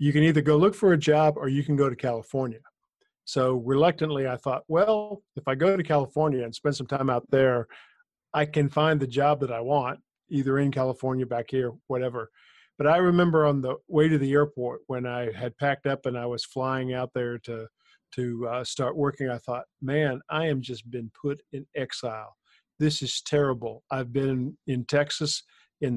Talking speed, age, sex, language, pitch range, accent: 200 wpm, 50-69, male, English, 130-150 Hz, American